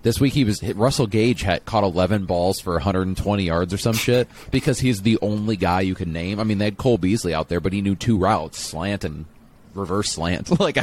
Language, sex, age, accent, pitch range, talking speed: English, male, 30-49, American, 85-115 Hz, 240 wpm